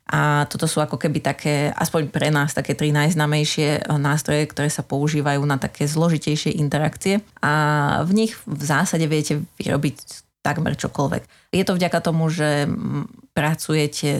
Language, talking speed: Slovak, 150 wpm